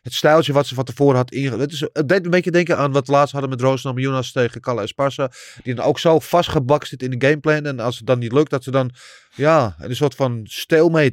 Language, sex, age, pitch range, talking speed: Dutch, male, 30-49, 115-155 Hz, 260 wpm